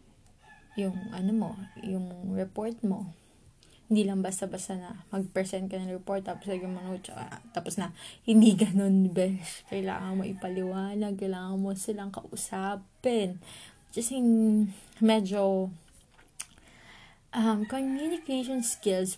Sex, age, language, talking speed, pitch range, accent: female, 20-39, Filipino, 105 wpm, 185-205 Hz, native